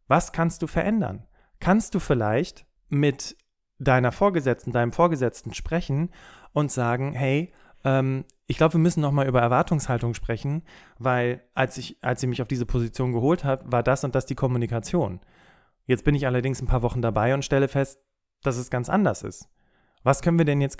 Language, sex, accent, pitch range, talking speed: German, male, German, 120-150 Hz, 180 wpm